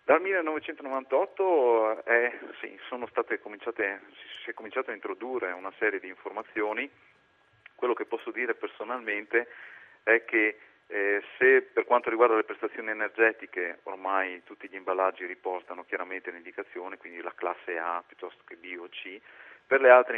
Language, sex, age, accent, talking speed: Italian, male, 40-59, native, 150 wpm